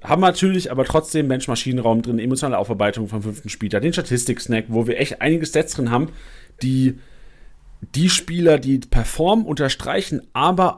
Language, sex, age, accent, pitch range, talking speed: German, male, 40-59, German, 125-170 Hz, 155 wpm